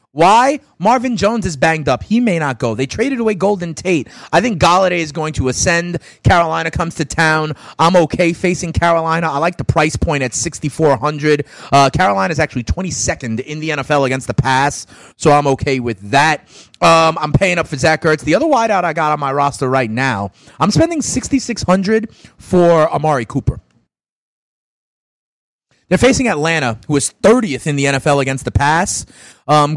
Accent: American